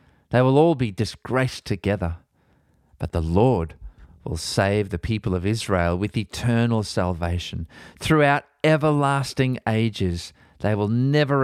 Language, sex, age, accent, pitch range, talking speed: English, male, 40-59, Australian, 95-130 Hz, 125 wpm